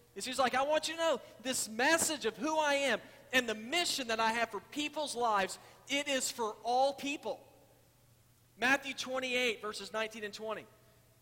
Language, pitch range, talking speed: English, 180-245 Hz, 175 wpm